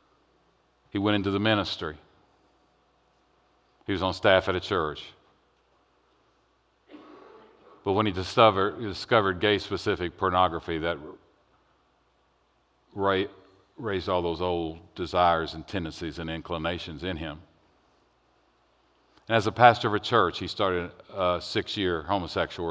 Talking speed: 115 wpm